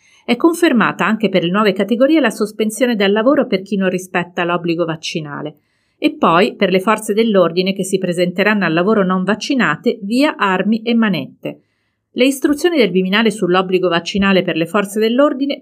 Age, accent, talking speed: 40-59, native, 170 wpm